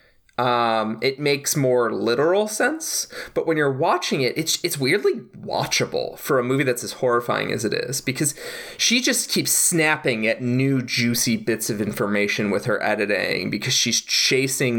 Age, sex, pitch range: 20-39, male, 115-160 Hz